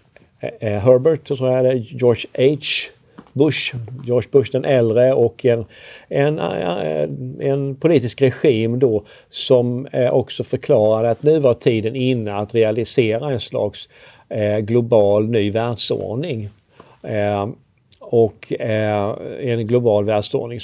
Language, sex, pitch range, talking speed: Swedish, male, 110-135 Hz, 95 wpm